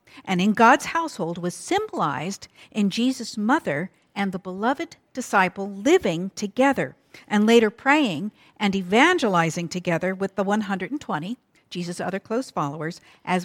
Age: 50-69